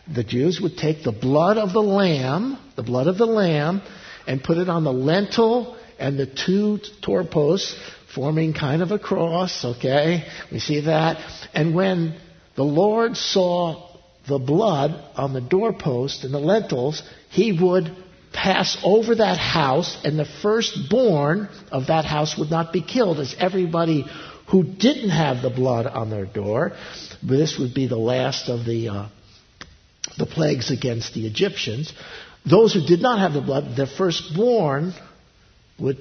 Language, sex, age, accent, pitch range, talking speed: English, male, 60-79, American, 130-190 Hz, 160 wpm